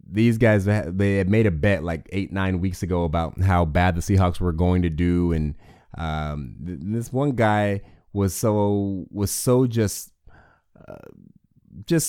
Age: 30-49